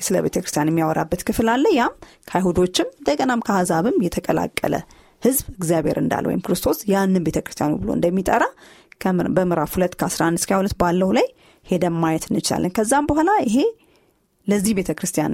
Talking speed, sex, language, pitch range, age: 100 wpm, female, Amharic, 170-235 Hz, 30-49